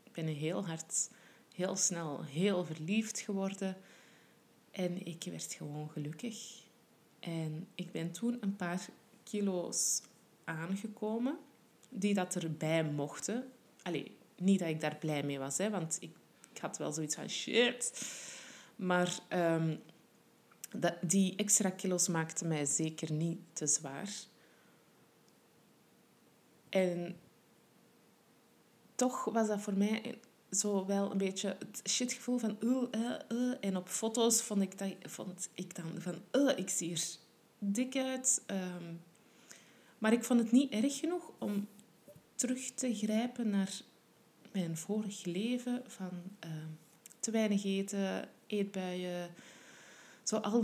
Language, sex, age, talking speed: Dutch, female, 20-39, 130 wpm